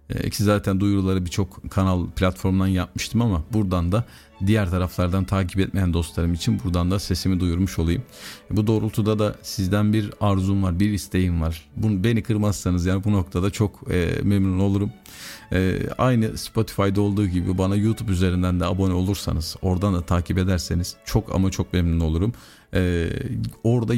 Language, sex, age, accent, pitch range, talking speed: Turkish, male, 50-69, native, 90-105 Hz, 160 wpm